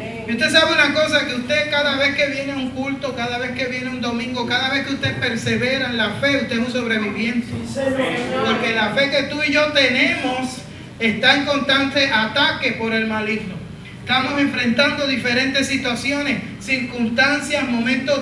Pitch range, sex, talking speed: 235-280 Hz, male, 170 wpm